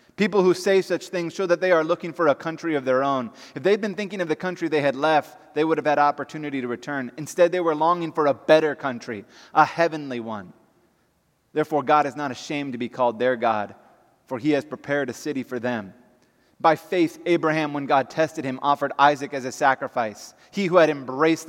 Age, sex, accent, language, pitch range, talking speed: 30-49, male, American, English, 130-160 Hz, 220 wpm